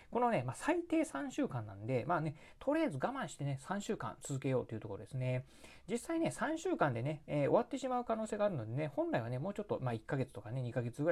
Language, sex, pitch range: Japanese, male, 120-165 Hz